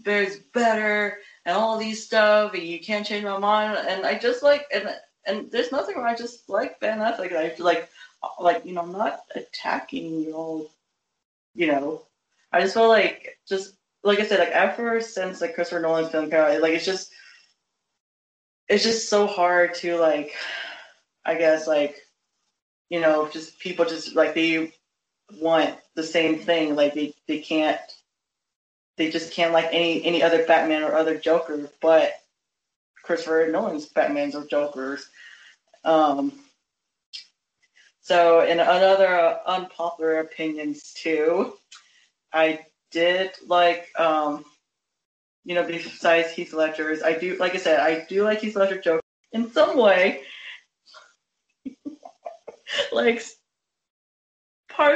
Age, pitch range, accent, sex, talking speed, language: 20-39, 160-215 Hz, American, female, 145 wpm, English